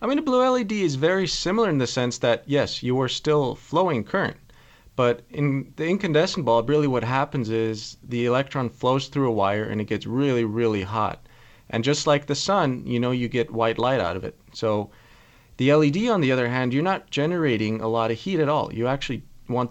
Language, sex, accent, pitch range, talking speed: English, male, American, 115-135 Hz, 220 wpm